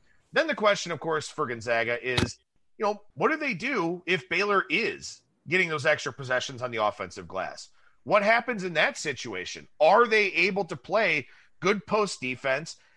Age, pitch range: 30-49, 130-190 Hz